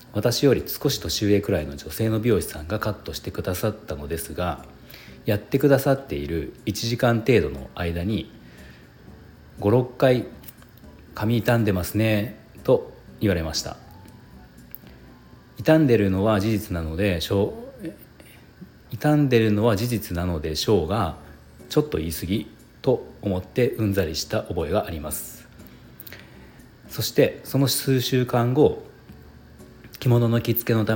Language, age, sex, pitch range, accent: Japanese, 40-59, male, 80-115 Hz, native